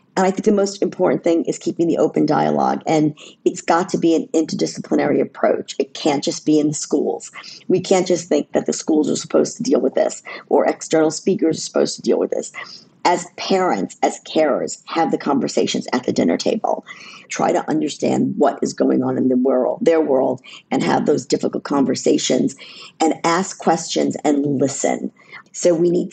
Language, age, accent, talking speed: English, 40-59, American, 195 wpm